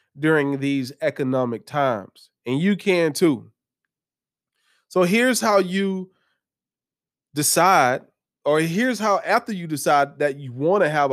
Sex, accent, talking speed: male, American, 130 wpm